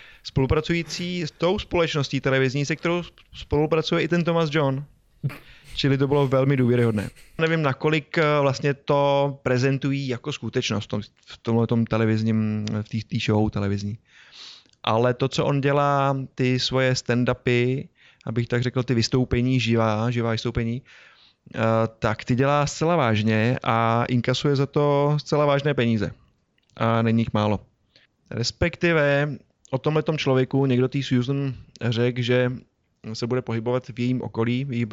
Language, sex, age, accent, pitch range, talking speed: Czech, male, 20-39, native, 115-135 Hz, 140 wpm